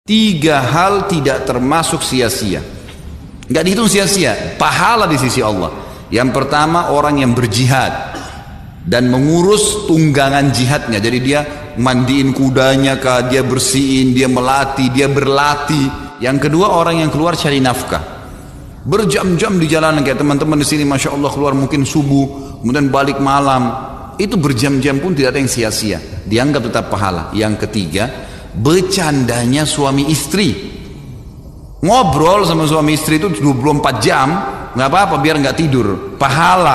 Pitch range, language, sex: 125-155 Hz, Indonesian, male